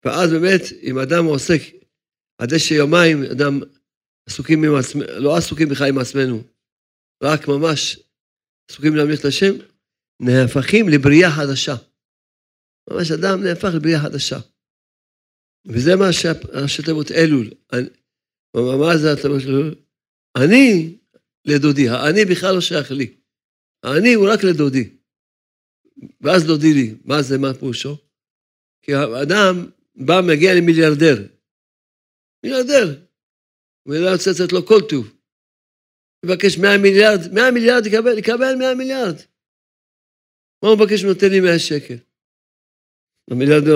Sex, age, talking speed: male, 50-69, 120 wpm